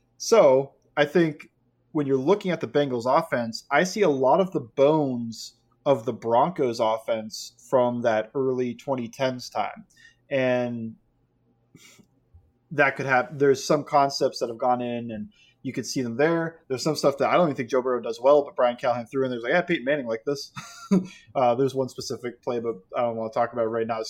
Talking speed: 205 wpm